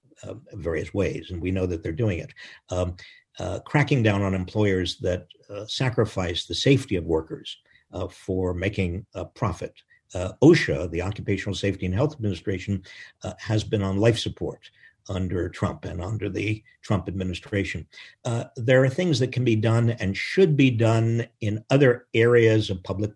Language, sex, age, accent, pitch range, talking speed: English, male, 50-69, American, 95-120 Hz, 170 wpm